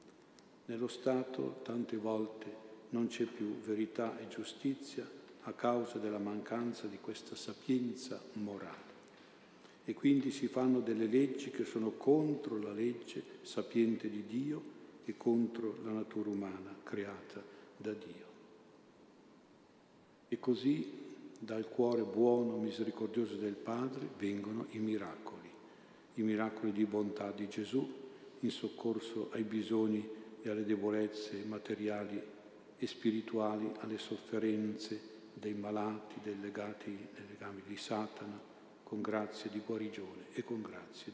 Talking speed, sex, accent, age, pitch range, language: 125 wpm, male, native, 50-69, 105-120 Hz, Italian